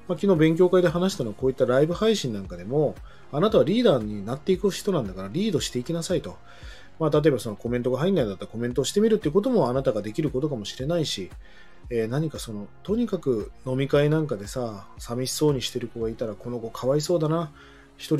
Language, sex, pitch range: Japanese, male, 115-185 Hz